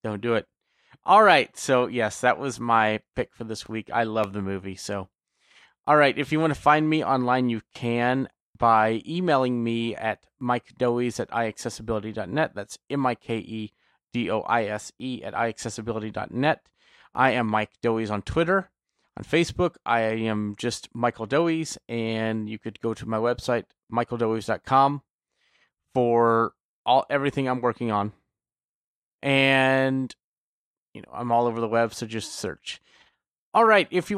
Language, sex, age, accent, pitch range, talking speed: English, male, 30-49, American, 110-140 Hz, 145 wpm